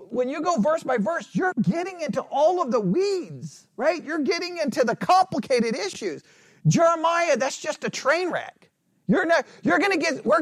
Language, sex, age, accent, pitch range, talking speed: English, male, 40-59, American, 210-295 Hz, 190 wpm